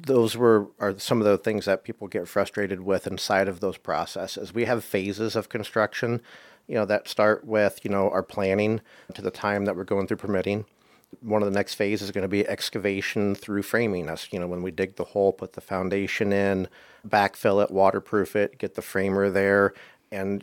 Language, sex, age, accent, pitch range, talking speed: English, male, 40-59, American, 95-105 Hz, 205 wpm